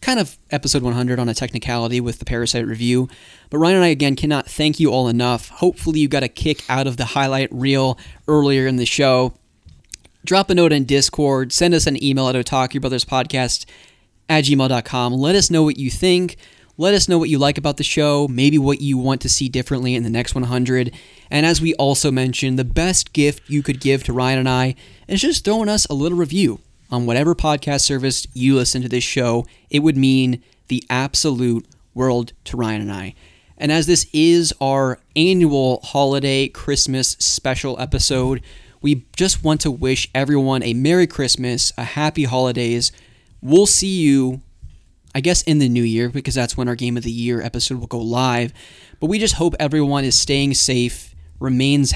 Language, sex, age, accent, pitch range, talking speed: English, male, 20-39, American, 120-145 Hz, 195 wpm